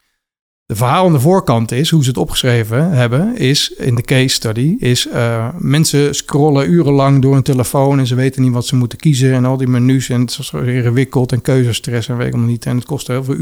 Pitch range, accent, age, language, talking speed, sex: 120-150 Hz, Dutch, 50-69, Dutch, 235 wpm, male